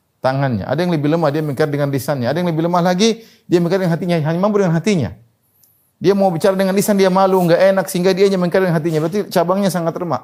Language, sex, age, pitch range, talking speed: Indonesian, male, 30-49, 120-180 Hz, 240 wpm